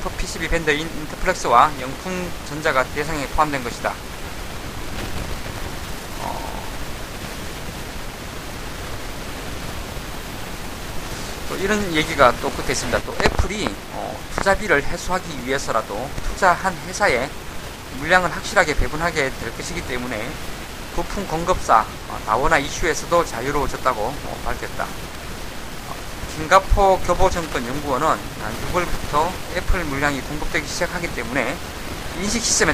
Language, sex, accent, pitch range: Korean, male, native, 145-195 Hz